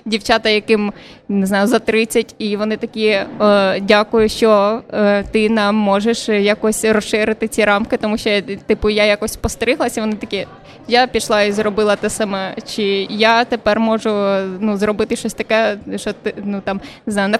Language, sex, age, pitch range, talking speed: Ukrainian, female, 20-39, 210-235 Hz, 155 wpm